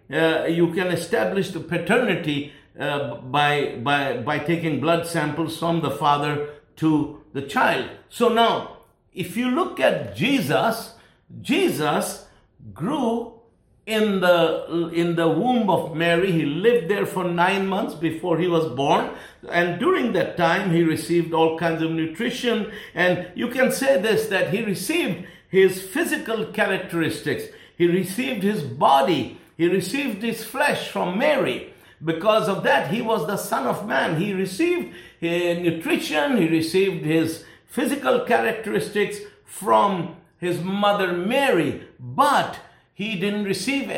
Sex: male